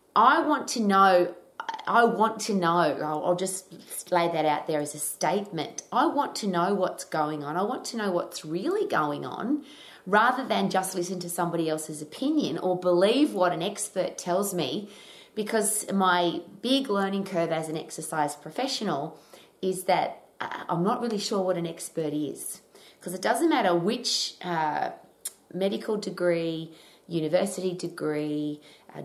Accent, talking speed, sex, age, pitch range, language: Australian, 160 wpm, female, 30-49, 155-195 Hz, English